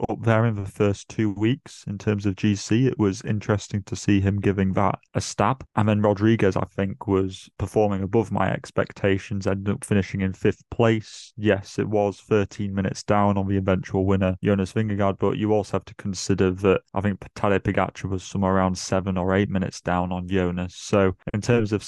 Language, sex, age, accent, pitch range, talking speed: English, male, 20-39, British, 95-105 Hz, 205 wpm